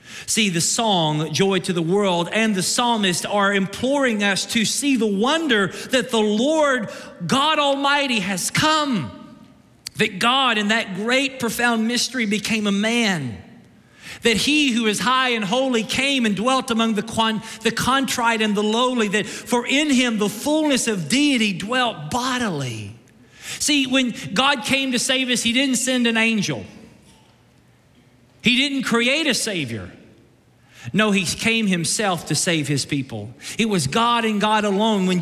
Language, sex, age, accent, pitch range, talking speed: English, male, 40-59, American, 205-255 Hz, 160 wpm